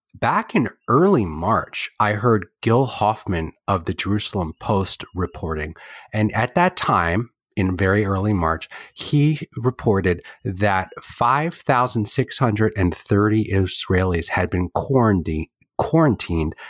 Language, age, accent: English, 30-49, American